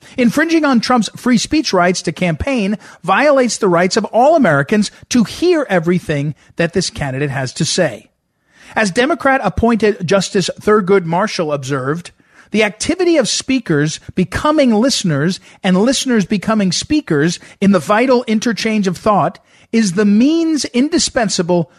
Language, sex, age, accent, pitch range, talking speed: English, male, 40-59, American, 165-235 Hz, 140 wpm